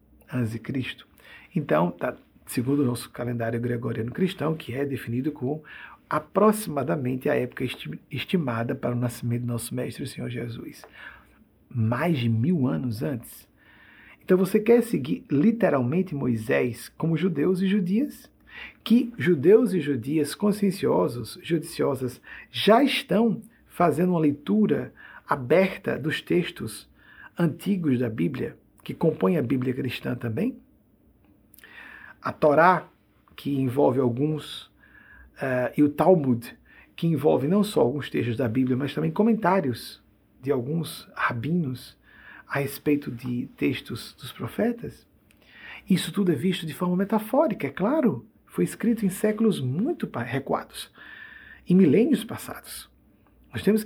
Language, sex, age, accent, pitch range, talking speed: Portuguese, male, 50-69, Brazilian, 125-205 Hz, 130 wpm